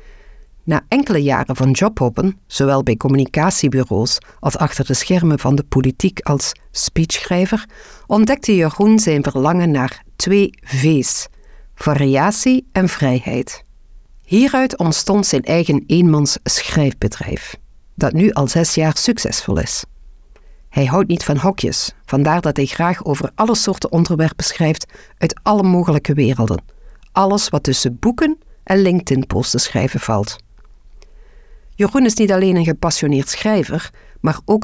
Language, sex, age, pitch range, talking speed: Dutch, female, 50-69, 135-195 Hz, 130 wpm